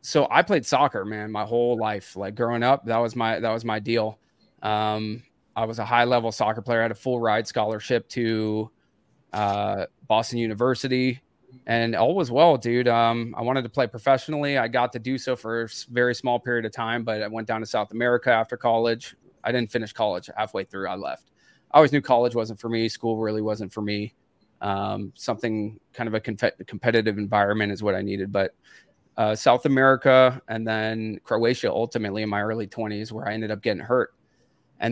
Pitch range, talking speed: 110-120 Hz, 200 wpm